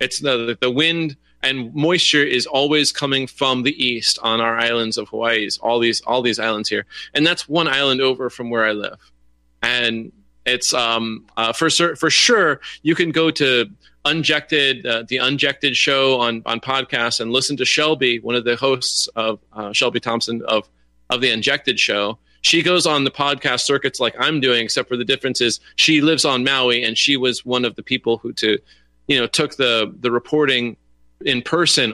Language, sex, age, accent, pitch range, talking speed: English, male, 30-49, American, 115-140 Hz, 195 wpm